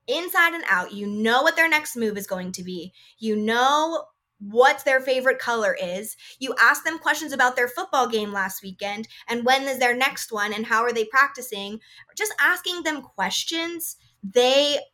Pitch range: 210-280 Hz